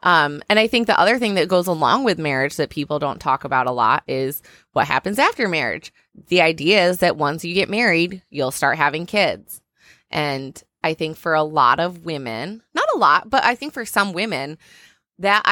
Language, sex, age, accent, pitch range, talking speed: English, female, 20-39, American, 155-205 Hz, 210 wpm